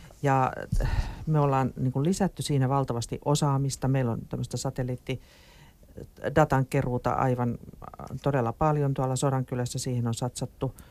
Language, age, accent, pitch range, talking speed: Finnish, 40-59, native, 125-145 Hz, 115 wpm